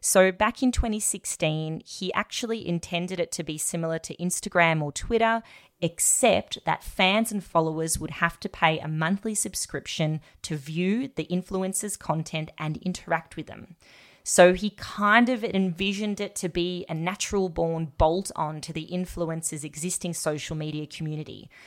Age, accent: 20-39, Australian